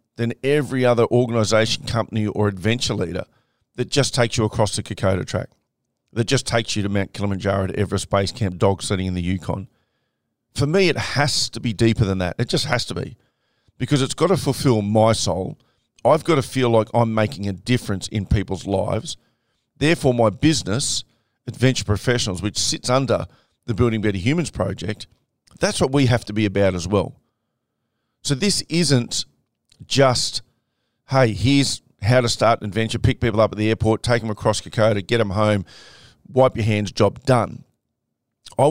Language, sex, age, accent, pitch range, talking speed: English, male, 40-59, Australian, 105-130 Hz, 180 wpm